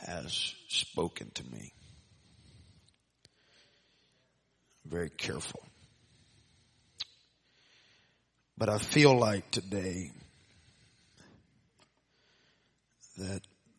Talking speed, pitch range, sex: 50 wpm, 95-125 Hz, male